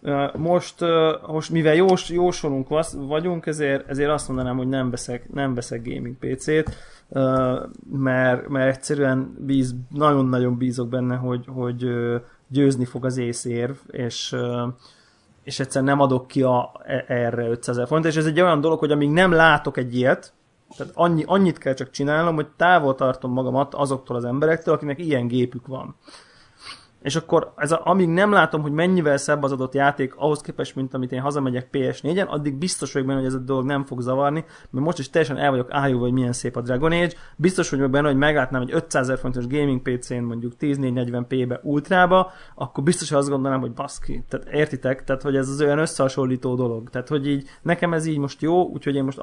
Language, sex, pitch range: Hungarian, male, 125-150 Hz